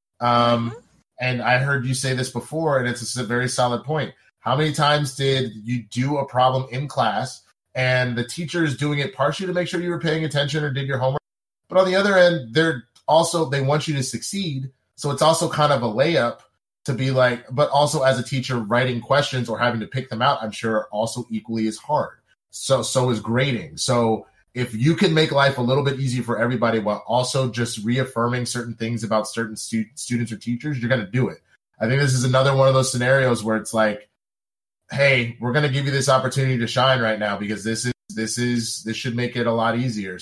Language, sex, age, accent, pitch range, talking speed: English, male, 30-49, American, 115-140 Hz, 225 wpm